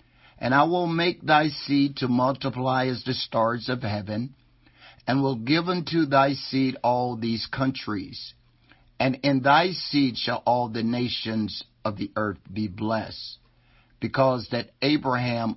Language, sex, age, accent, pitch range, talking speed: English, male, 50-69, American, 110-135 Hz, 145 wpm